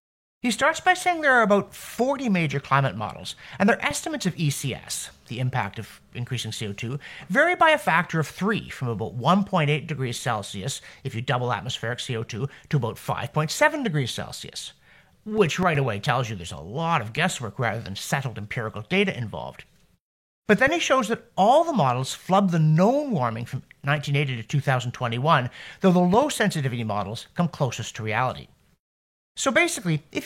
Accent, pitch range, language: American, 115-195 Hz, English